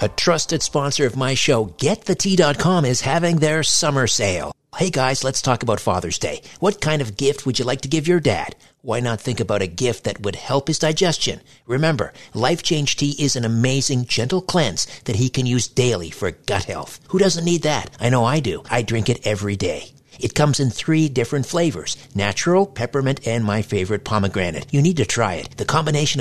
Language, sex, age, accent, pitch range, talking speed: English, male, 50-69, American, 115-150 Hz, 205 wpm